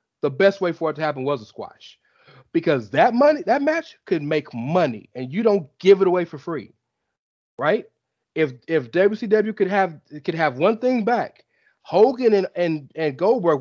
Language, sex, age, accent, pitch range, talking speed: English, male, 30-49, American, 155-220 Hz, 185 wpm